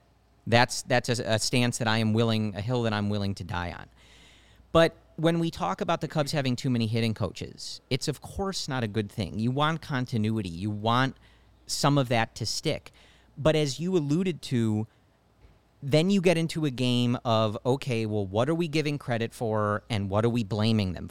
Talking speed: 205 wpm